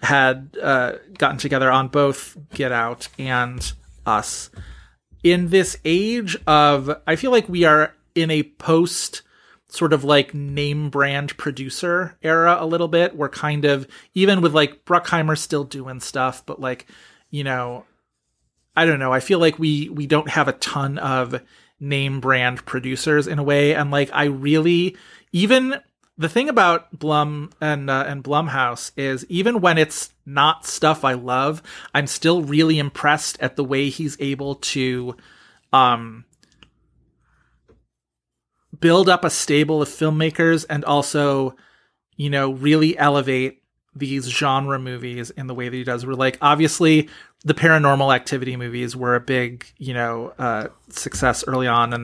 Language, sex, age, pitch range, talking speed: English, male, 30-49, 130-160 Hz, 155 wpm